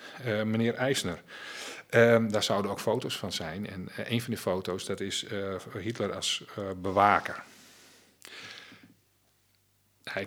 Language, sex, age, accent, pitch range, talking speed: Dutch, male, 40-59, Dutch, 90-110 Hz, 140 wpm